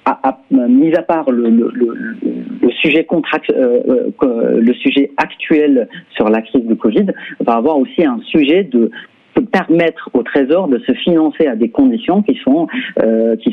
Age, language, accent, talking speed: 40-59, French, French, 180 wpm